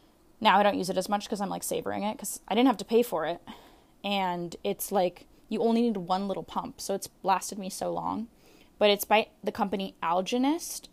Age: 10-29